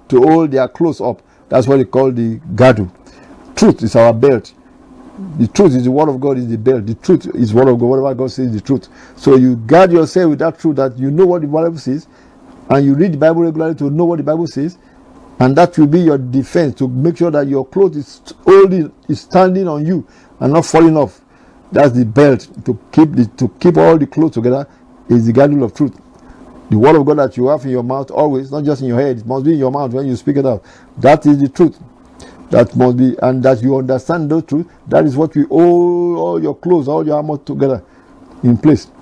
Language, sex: English, male